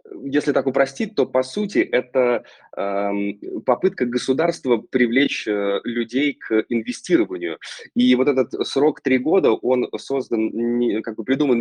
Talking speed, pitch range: 135 wpm, 100-135 Hz